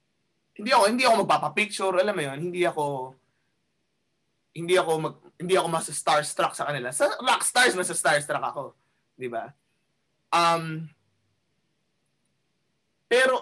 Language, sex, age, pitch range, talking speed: English, male, 20-39, 140-205 Hz, 105 wpm